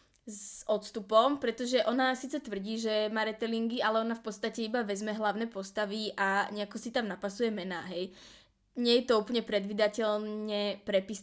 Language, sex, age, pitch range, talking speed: English, female, 20-39, 205-235 Hz, 155 wpm